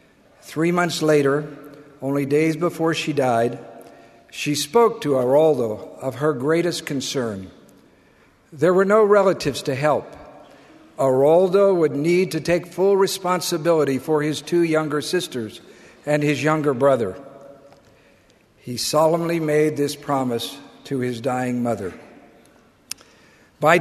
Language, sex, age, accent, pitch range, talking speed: English, male, 60-79, American, 140-180 Hz, 120 wpm